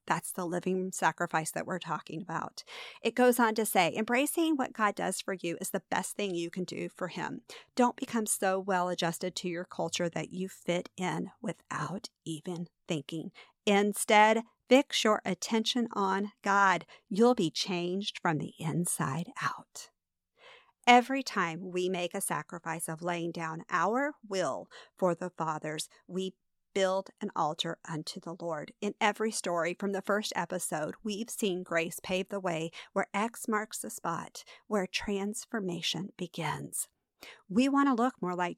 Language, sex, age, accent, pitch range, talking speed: English, female, 50-69, American, 175-225 Hz, 160 wpm